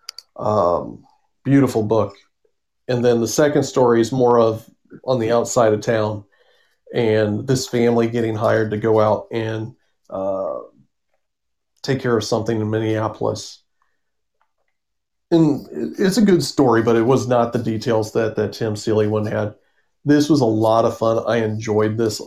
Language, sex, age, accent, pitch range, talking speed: English, male, 40-59, American, 110-125 Hz, 155 wpm